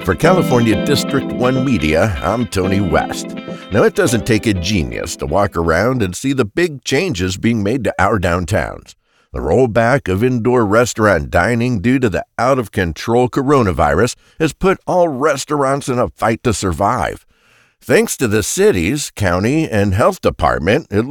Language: English